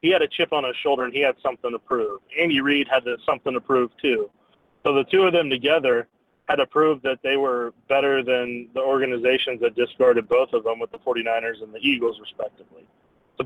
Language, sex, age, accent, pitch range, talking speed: English, male, 30-49, American, 125-150 Hz, 220 wpm